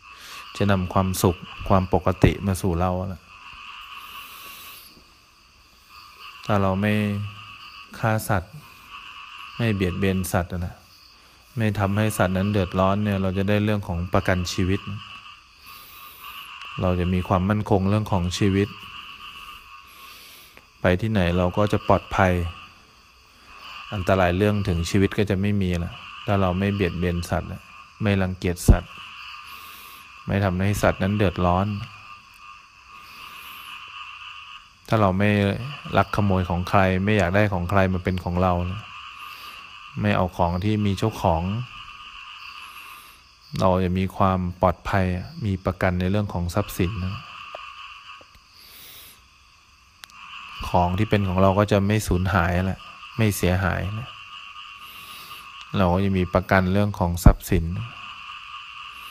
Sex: male